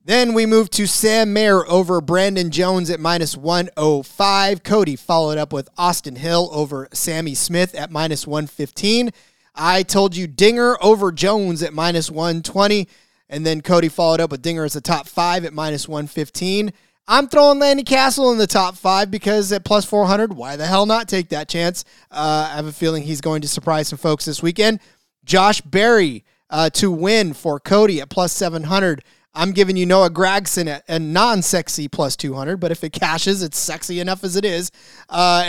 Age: 30-49